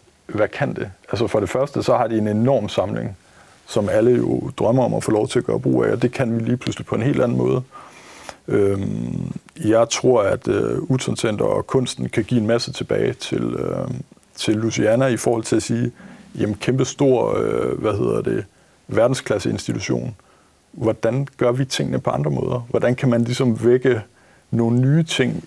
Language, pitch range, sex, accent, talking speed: Danish, 110-130 Hz, male, native, 185 wpm